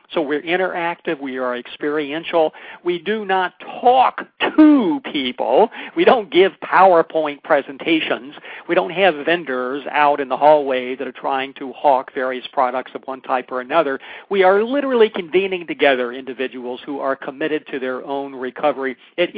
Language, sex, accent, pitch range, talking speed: English, male, American, 135-180 Hz, 160 wpm